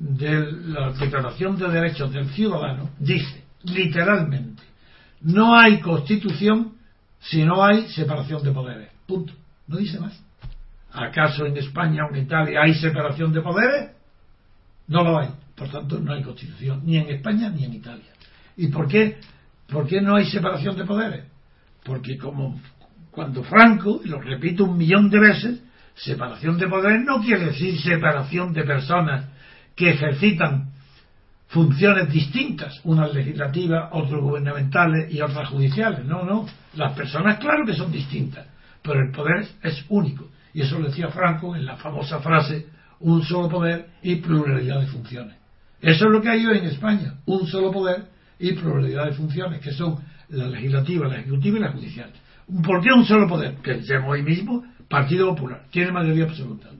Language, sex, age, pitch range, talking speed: Spanish, male, 60-79, 140-180 Hz, 165 wpm